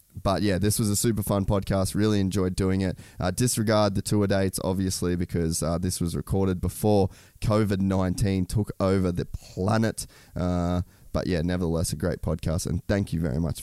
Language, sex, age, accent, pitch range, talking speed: English, male, 20-39, Australian, 90-105 Hz, 180 wpm